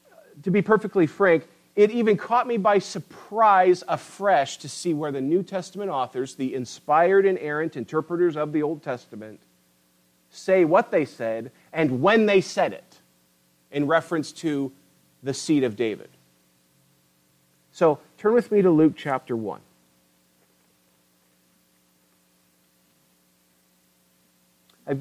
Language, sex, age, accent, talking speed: English, male, 40-59, American, 125 wpm